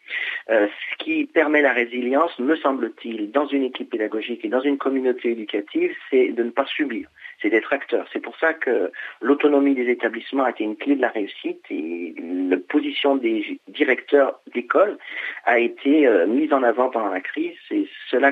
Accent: French